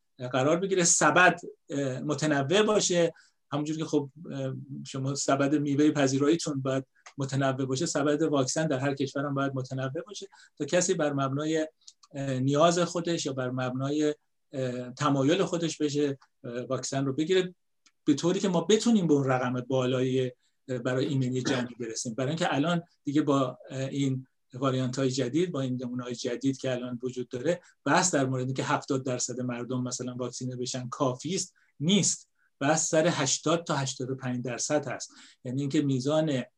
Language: Persian